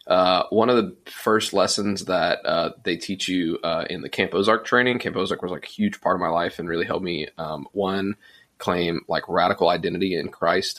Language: English